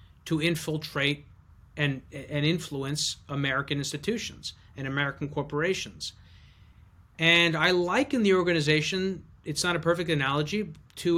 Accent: American